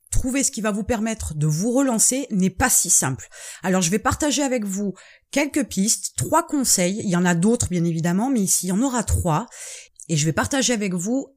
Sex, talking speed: female, 225 wpm